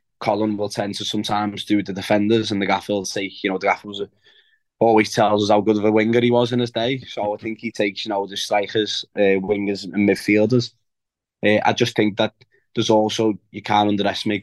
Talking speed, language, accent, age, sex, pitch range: 230 wpm, English, British, 20-39, male, 100-110 Hz